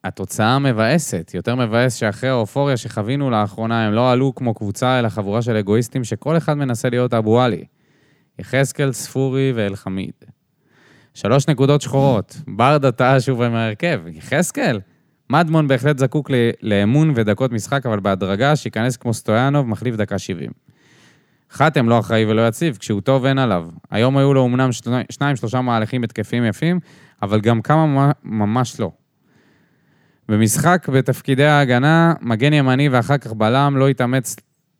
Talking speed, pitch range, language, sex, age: 140 wpm, 110-140 Hz, Hebrew, male, 20-39